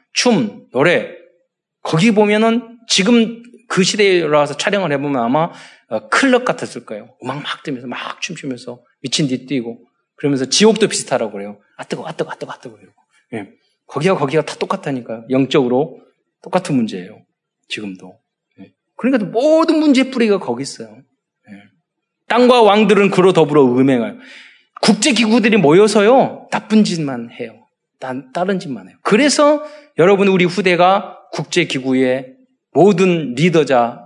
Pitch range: 130-225 Hz